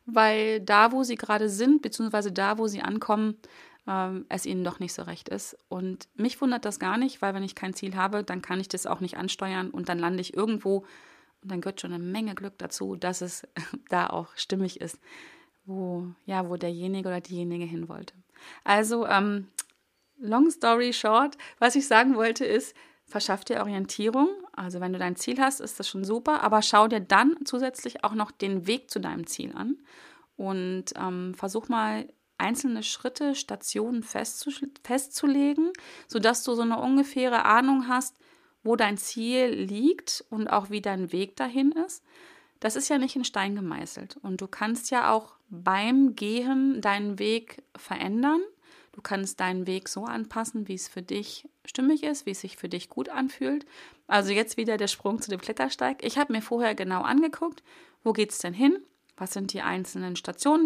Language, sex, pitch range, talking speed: German, female, 195-270 Hz, 185 wpm